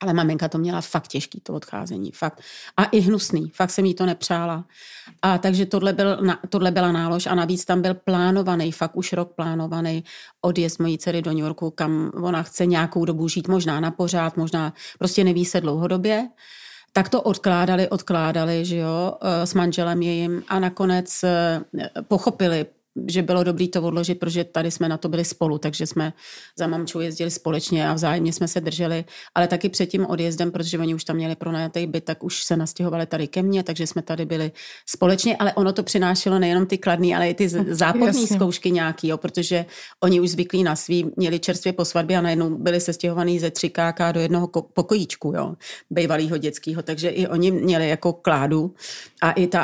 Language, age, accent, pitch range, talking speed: Czech, 40-59, native, 165-185 Hz, 185 wpm